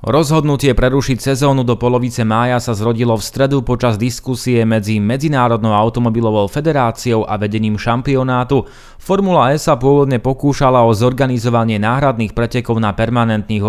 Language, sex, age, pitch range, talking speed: Slovak, male, 30-49, 110-135 Hz, 130 wpm